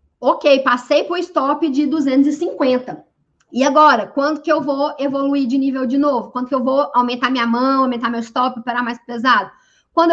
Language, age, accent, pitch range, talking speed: Portuguese, 20-39, Brazilian, 235-305 Hz, 190 wpm